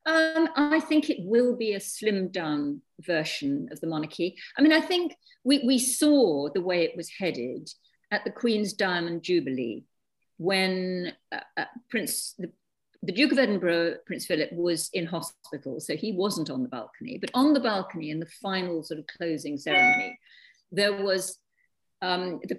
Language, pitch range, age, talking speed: English, 170-245 Hz, 50-69, 175 wpm